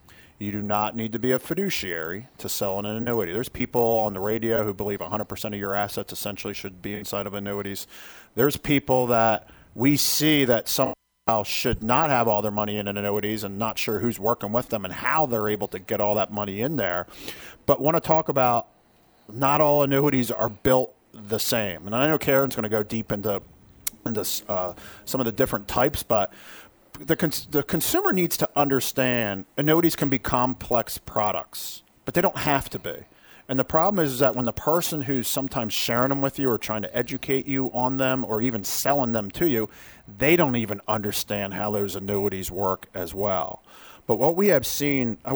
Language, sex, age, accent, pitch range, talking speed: English, male, 40-59, American, 105-135 Hz, 205 wpm